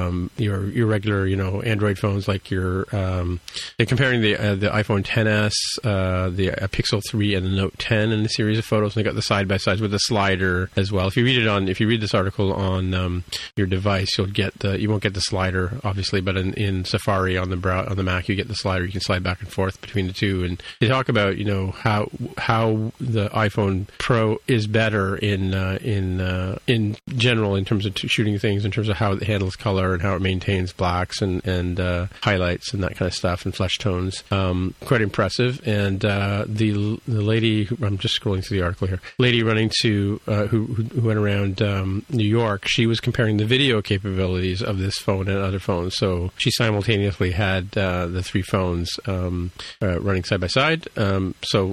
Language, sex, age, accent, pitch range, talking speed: English, male, 40-59, American, 95-110 Hz, 225 wpm